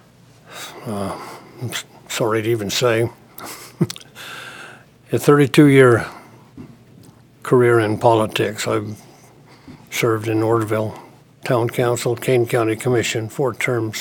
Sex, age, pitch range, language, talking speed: male, 60-79, 110-125 Hz, English, 95 wpm